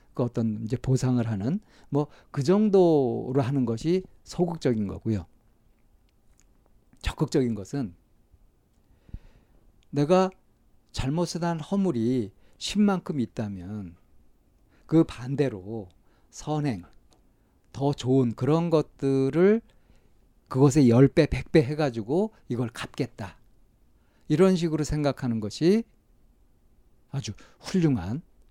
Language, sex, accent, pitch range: Korean, male, native, 115-165 Hz